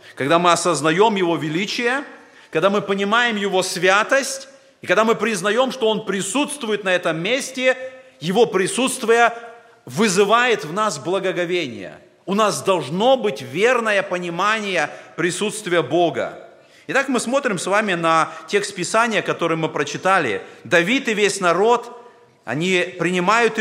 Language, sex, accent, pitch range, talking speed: Russian, male, native, 170-230 Hz, 130 wpm